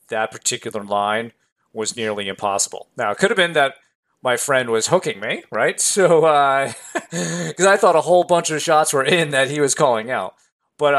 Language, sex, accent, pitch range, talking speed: English, male, American, 100-145 Hz, 195 wpm